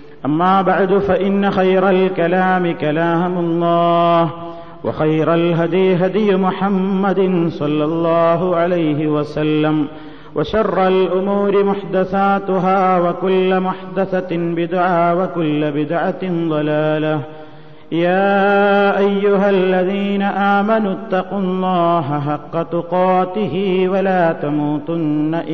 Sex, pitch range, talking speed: male, 155-195 Hz, 80 wpm